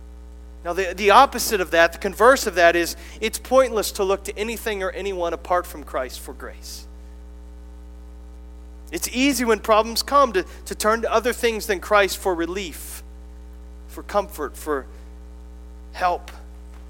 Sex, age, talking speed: male, 40-59, 155 wpm